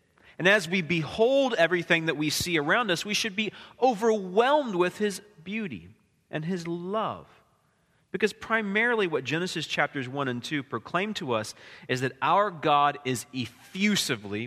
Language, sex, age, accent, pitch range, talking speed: English, male, 30-49, American, 125-195 Hz, 155 wpm